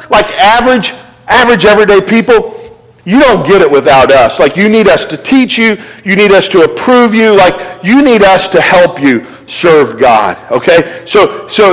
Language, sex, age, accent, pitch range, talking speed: English, male, 50-69, American, 180-245 Hz, 185 wpm